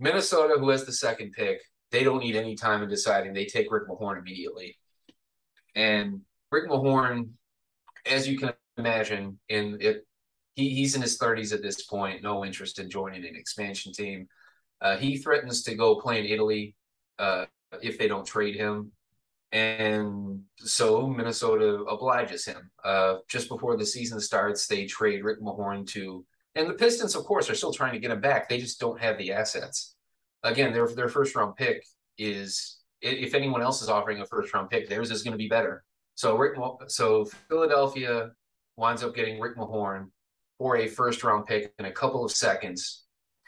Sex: male